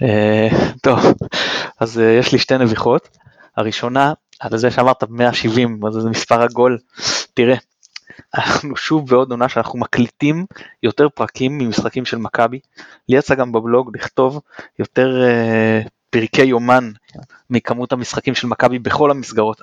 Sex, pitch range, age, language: male, 110-140 Hz, 20-39, Hebrew